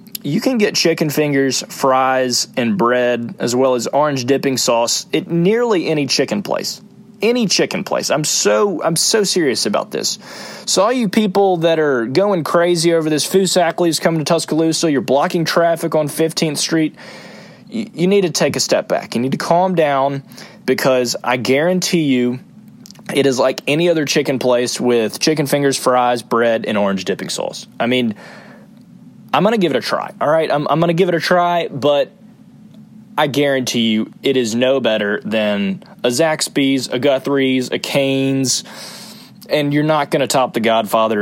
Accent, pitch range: American, 130-180 Hz